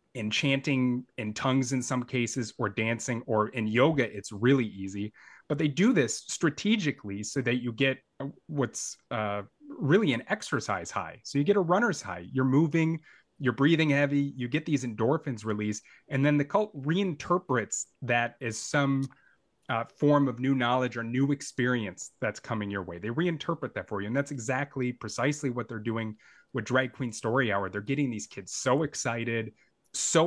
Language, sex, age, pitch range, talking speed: English, male, 30-49, 110-140 Hz, 180 wpm